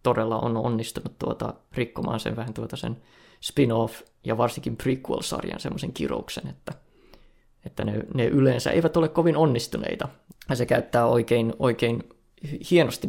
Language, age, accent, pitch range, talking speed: Finnish, 20-39, native, 115-130 Hz, 125 wpm